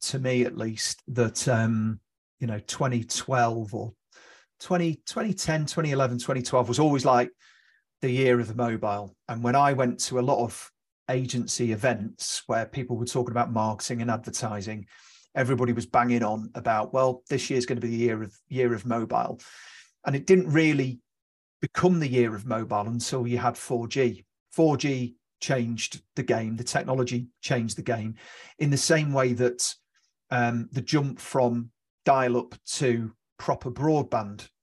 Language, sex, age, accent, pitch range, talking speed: English, male, 40-59, British, 120-135 Hz, 160 wpm